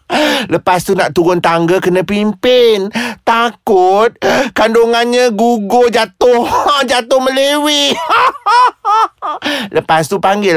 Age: 30-49